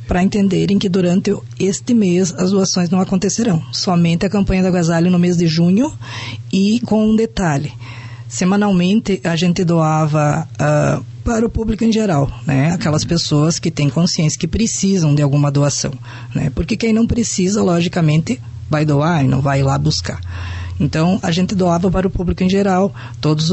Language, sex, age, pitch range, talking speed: Portuguese, female, 20-39, 145-190 Hz, 170 wpm